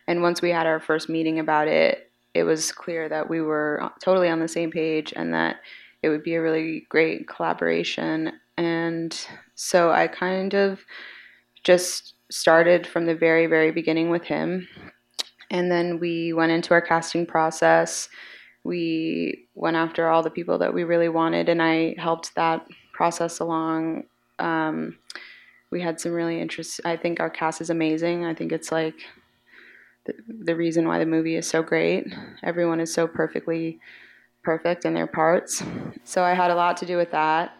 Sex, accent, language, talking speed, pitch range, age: female, American, English, 170 wpm, 160-175 Hz, 20-39